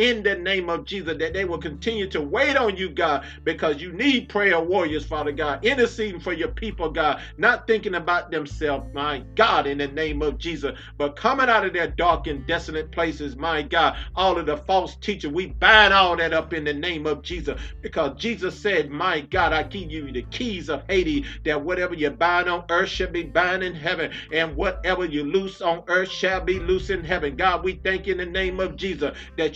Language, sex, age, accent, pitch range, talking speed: English, male, 50-69, American, 160-190 Hz, 215 wpm